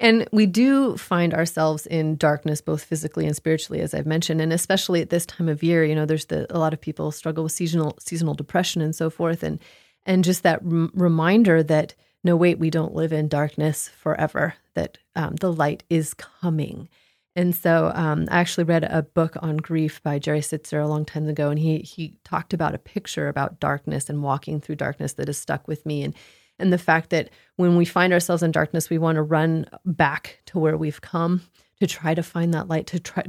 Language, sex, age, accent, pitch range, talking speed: English, female, 30-49, American, 155-175 Hz, 215 wpm